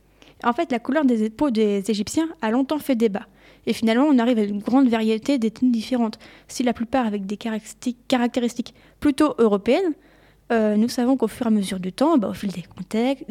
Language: French